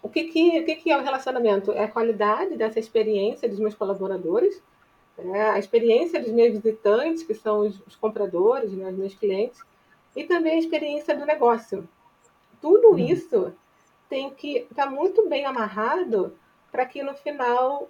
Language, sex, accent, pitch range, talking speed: Portuguese, female, Brazilian, 210-275 Hz, 170 wpm